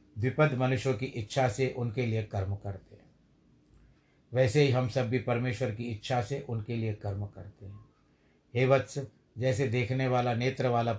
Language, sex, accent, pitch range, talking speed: Hindi, male, native, 110-130 Hz, 170 wpm